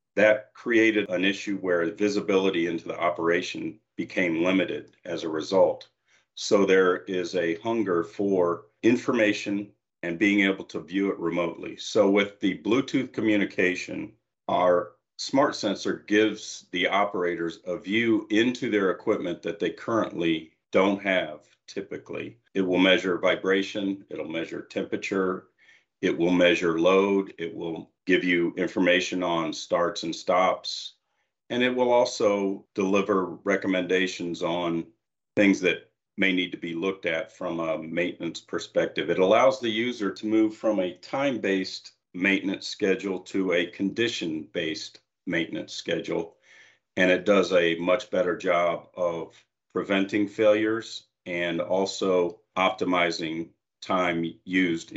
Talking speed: 130 wpm